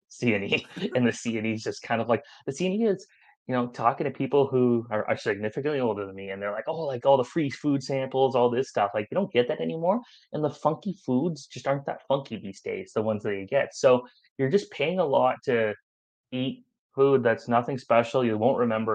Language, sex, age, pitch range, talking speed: English, male, 20-39, 110-140 Hz, 235 wpm